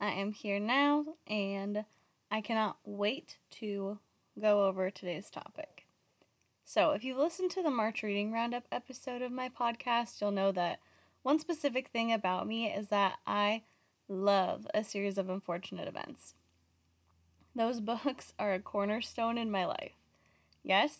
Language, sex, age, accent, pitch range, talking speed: English, female, 20-39, American, 195-235 Hz, 150 wpm